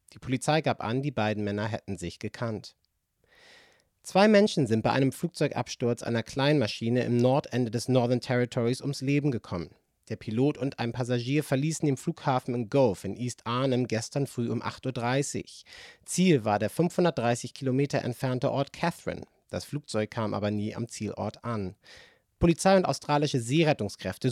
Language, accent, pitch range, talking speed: German, German, 115-150 Hz, 160 wpm